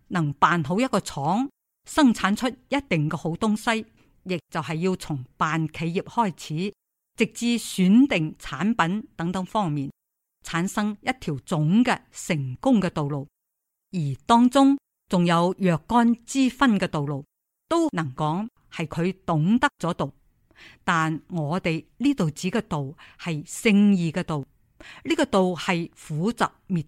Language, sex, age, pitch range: Chinese, female, 50-69, 165-225 Hz